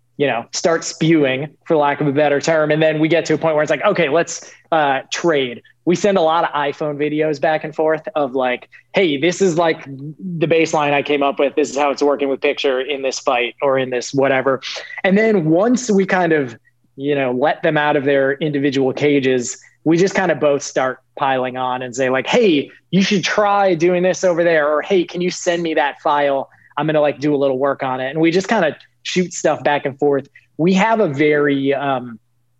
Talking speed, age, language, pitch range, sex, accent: 235 wpm, 20-39, English, 130-165 Hz, male, American